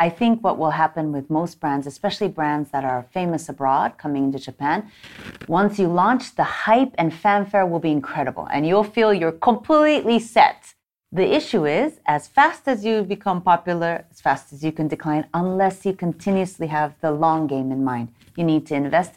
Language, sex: English, female